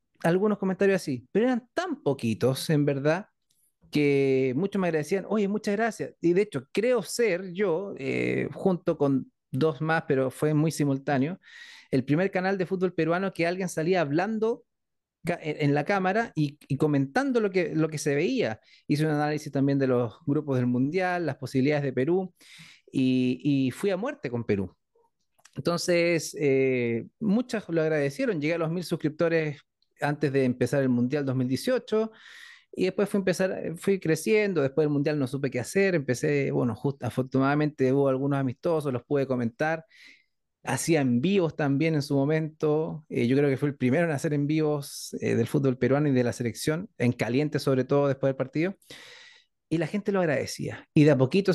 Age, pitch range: 30-49, 135-185 Hz